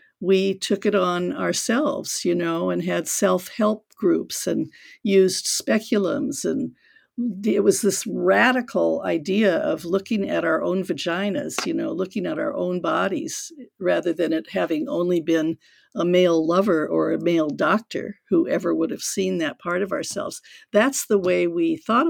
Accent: American